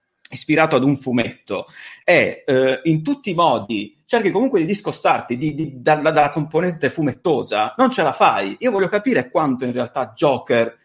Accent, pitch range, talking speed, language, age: native, 120-170 Hz, 155 wpm, Italian, 30-49